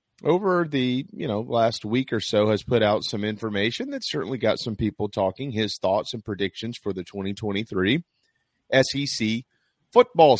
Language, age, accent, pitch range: English, 30-49, American, 100-125 Hz